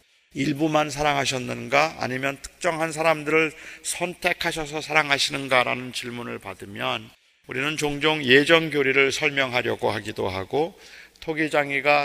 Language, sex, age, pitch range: Korean, male, 40-59, 125-155 Hz